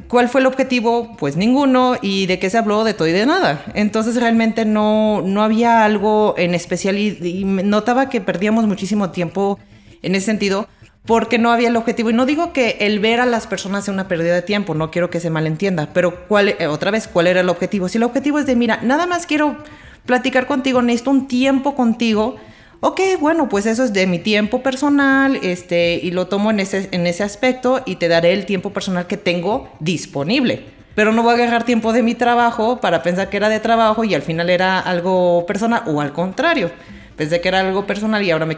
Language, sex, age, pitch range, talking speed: Spanish, female, 30-49, 175-235 Hz, 215 wpm